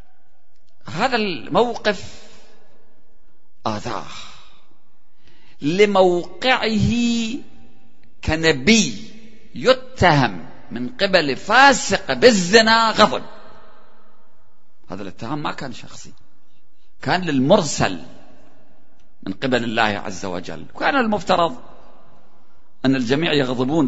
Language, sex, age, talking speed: Arabic, male, 50-69, 70 wpm